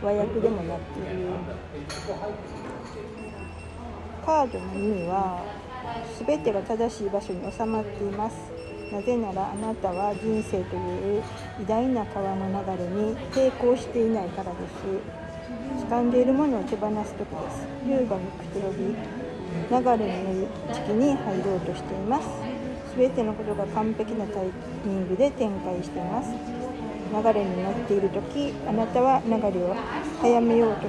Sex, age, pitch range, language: female, 50-69, 195-240 Hz, Japanese